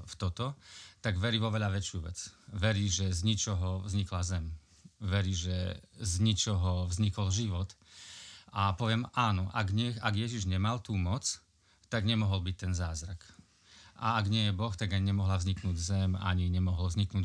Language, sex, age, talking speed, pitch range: Slovak, male, 30-49, 160 wpm, 95-115 Hz